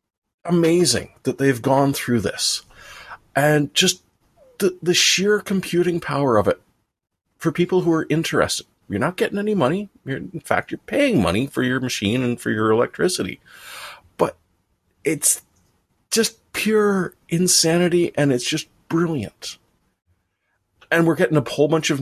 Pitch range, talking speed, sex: 100-145 Hz, 145 wpm, male